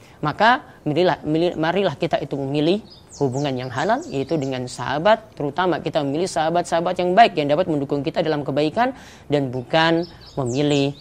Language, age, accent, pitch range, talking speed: Indonesian, 20-39, native, 130-160 Hz, 140 wpm